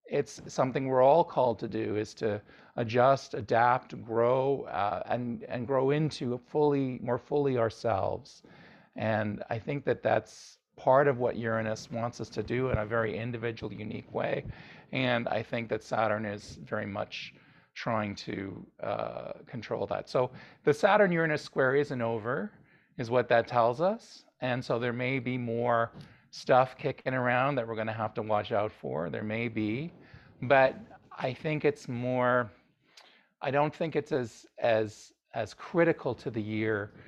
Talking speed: 165 wpm